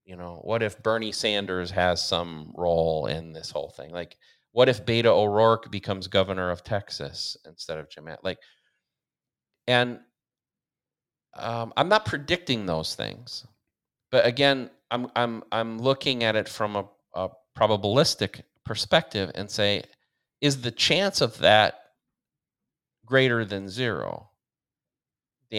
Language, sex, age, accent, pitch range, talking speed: English, male, 40-59, American, 95-125 Hz, 135 wpm